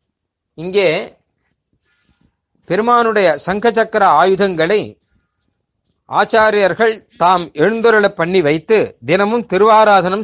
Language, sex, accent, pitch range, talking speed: Tamil, male, native, 155-215 Hz, 65 wpm